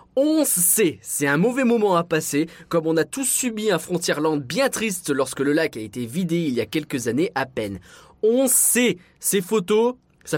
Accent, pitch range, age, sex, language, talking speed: French, 150-210 Hz, 20-39, male, French, 210 wpm